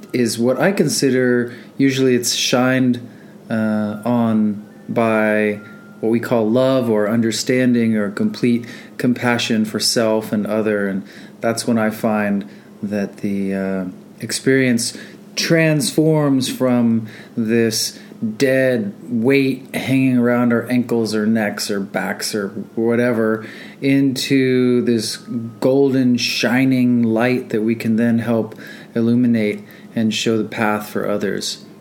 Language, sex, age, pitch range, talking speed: English, male, 30-49, 110-135 Hz, 120 wpm